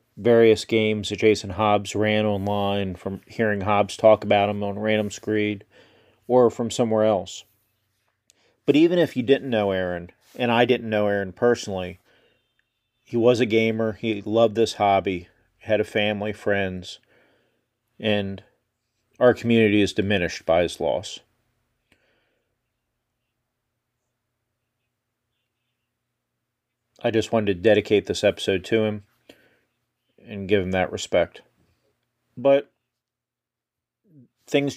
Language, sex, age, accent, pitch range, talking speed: English, male, 40-59, American, 105-120 Hz, 120 wpm